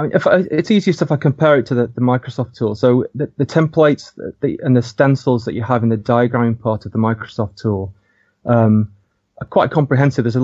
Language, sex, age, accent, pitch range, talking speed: English, male, 30-49, British, 110-125 Hz, 230 wpm